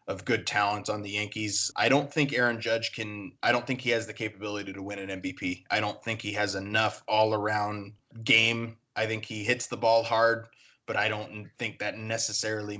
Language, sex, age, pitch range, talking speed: English, male, 20-39, 105-115 Hz, 205 wpm